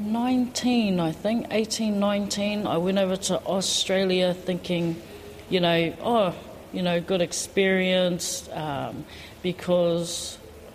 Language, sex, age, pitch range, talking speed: English, female, 40-59, 160-190 Hz, 110 wpm